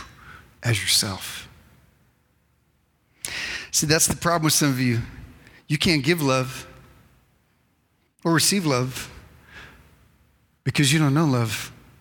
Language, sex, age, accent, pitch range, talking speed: English, male, 40-59, American, 130-170 Hz, 110 wpm